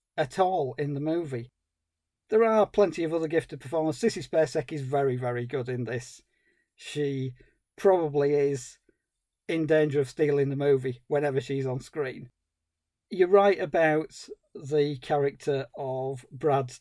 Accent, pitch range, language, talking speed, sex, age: British, 140-175 Hz, English, 145 wpm, male, 40-59